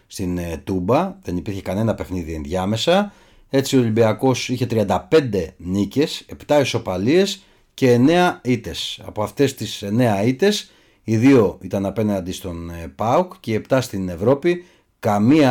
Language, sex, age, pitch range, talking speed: Greek, male, 30-49, 95-130 Hz, 135 wpm